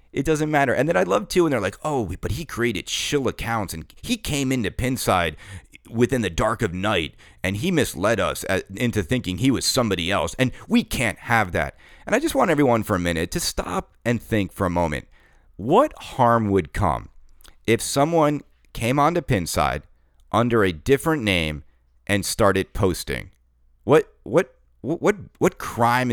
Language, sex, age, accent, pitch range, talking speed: English, male, 40-59, American, 90-125 Hz, 180 wpm